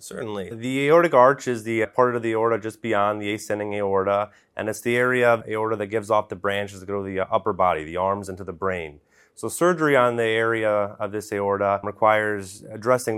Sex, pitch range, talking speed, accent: male, 100-120 Hz, 220 wpm, American